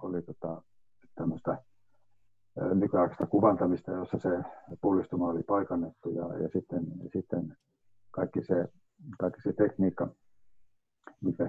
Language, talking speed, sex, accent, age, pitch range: Finnish, 105 wpm, male, native, 50-69, 90-105 Hz